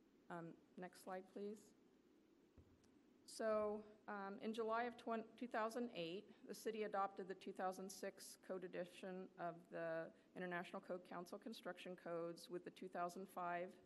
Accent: American